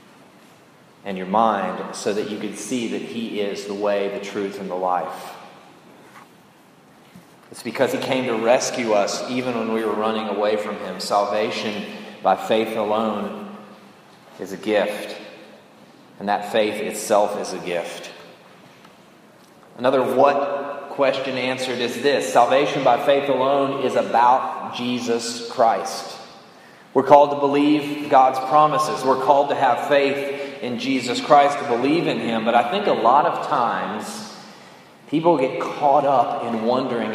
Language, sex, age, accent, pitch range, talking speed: English, male, 30-49, American, 110-145 Hz, 150 wpm